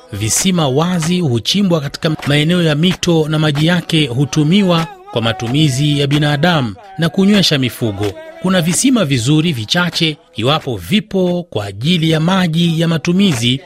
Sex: male